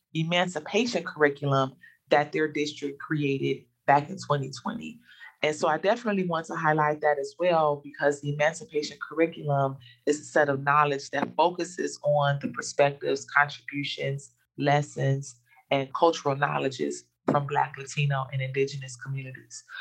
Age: 20-39